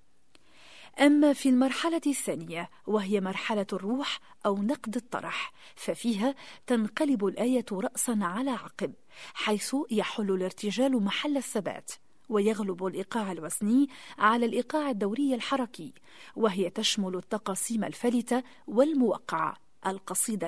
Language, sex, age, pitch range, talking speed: Arabic, female, 40-59, 200-265 Hz, 100 wpm